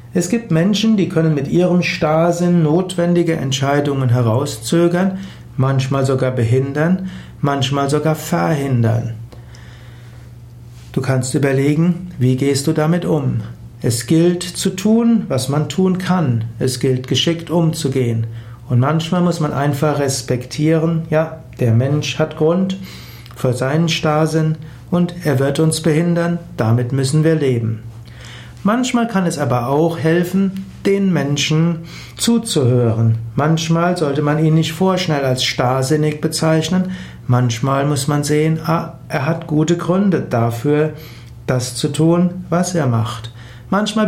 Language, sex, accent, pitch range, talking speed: German, male, German, 125-165 Hz, 130 wpm